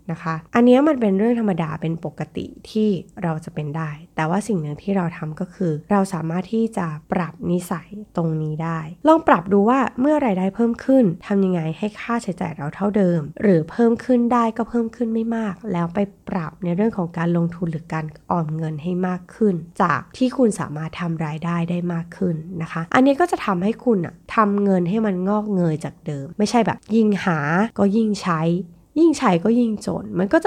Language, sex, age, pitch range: Thai, female, 20-39, 165-225 Hz